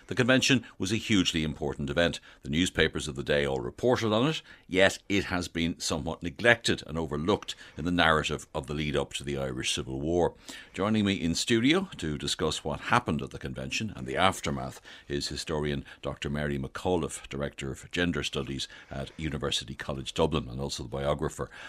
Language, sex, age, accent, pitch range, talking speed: English, male, 60-79, Irish, 70-90 Hz, 185 wpm